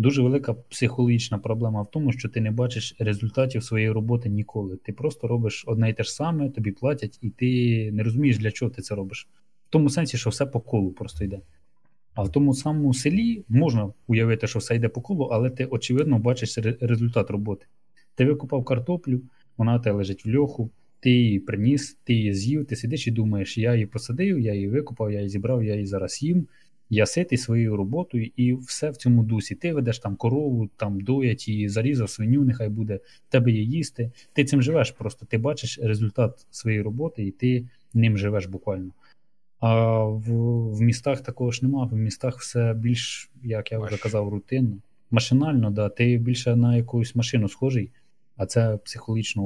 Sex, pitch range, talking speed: male, 110-130 Hz, 190 wpm